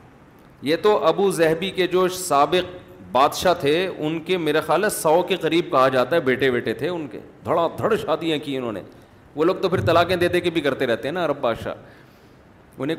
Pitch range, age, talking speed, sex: 125-175 Hz, 40-59, 210 wpm, male